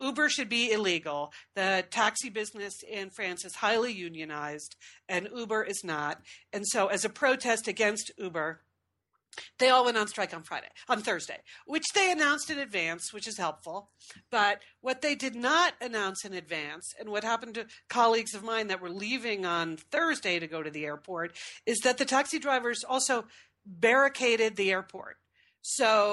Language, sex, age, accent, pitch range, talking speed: English, female, 40-59, American, 190-260 Hz, 170 wpm